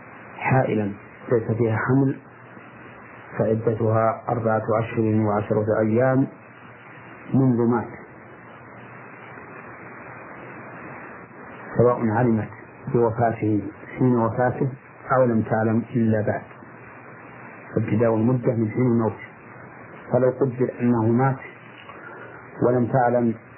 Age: 50-69